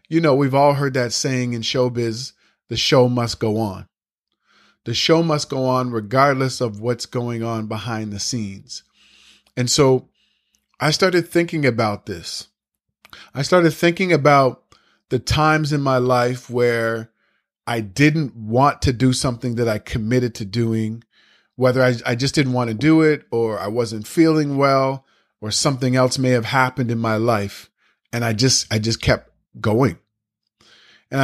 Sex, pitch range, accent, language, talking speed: male, 115-140 Hz, American, English, 165 wpm